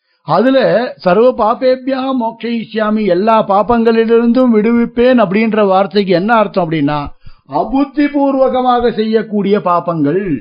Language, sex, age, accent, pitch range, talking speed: Tamil, male, 50-69, native, 150-235 Hz, 90 wpm